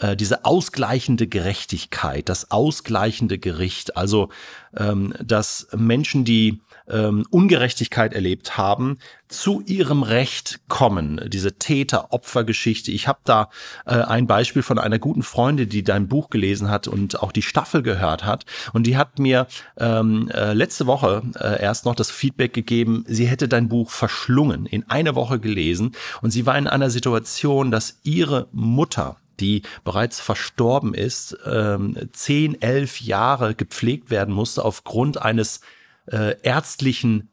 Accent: German